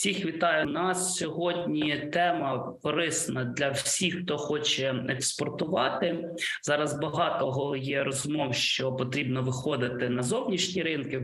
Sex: male